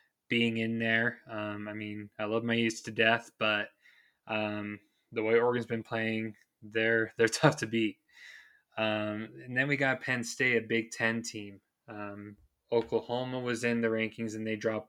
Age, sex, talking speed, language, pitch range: 20-39, male, 175 wpm, English, 110-120 Hz